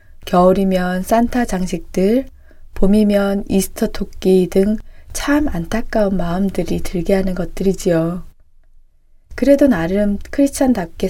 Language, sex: Korean, female